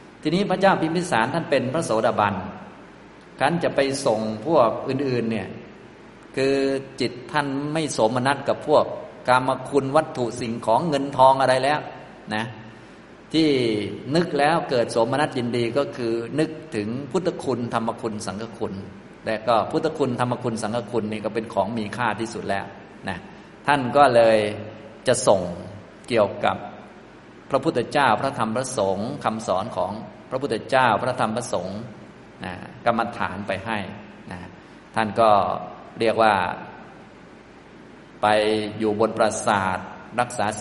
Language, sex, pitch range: Thai, male, 110-135 Hz